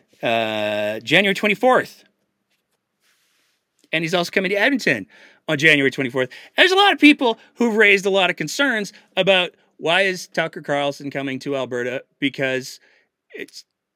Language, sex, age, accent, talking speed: English, male, 30-49, American, 145 wpm